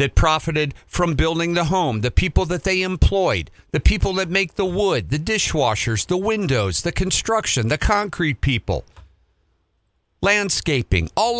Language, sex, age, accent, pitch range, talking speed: English, male, 50-69, American, 110-180 Hz, 145 wpm